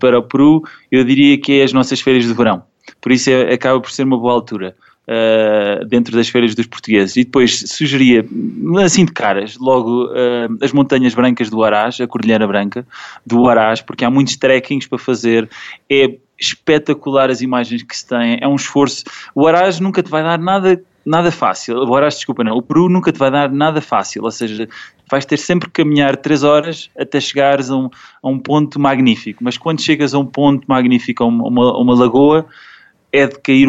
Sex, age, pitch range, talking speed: male, 20-39, 120-140 Hz, 200 wpm